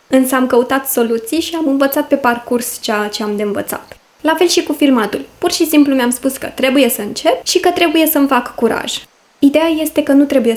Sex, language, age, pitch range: female, Romanian, 20-39, 225-285 Hz